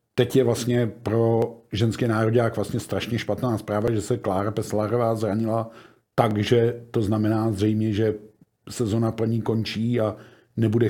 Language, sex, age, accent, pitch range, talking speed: Czech, male, 50-69, native, 115-140 Hz, 140 wpm